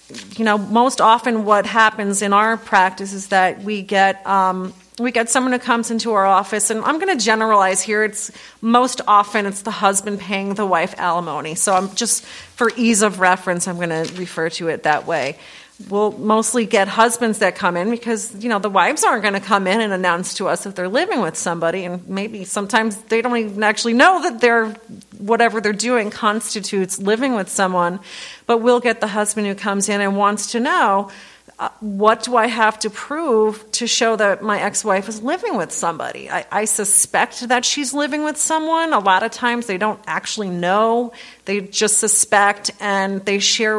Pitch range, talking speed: 195-230 Hz, 205 wpm